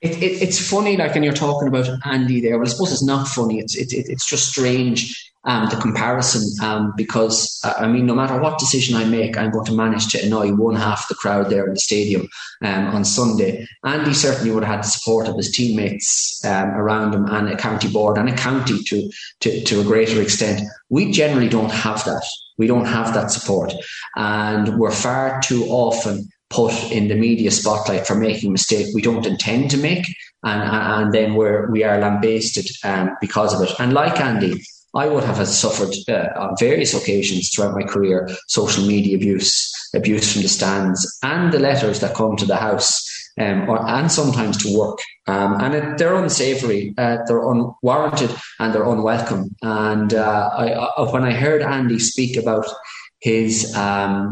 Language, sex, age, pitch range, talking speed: English, male, 20-39, 105-125 Hz, 200 wpm